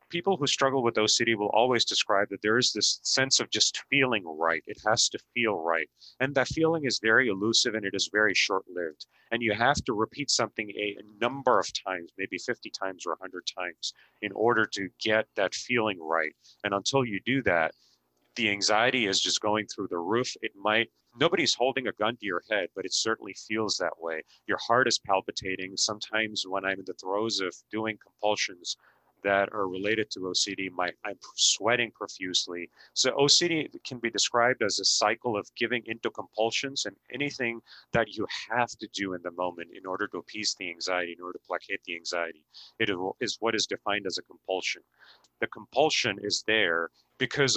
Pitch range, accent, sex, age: 95-115 Hz, American, male, 40-59